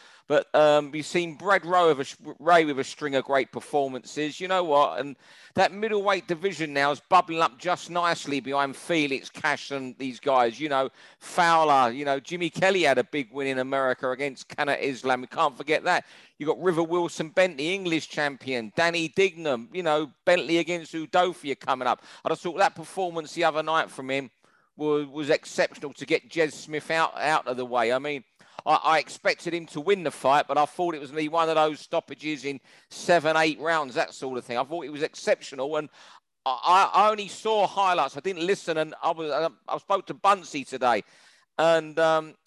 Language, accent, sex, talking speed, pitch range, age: English, British, male, 195 wpm, 140-180 Hz, 40-59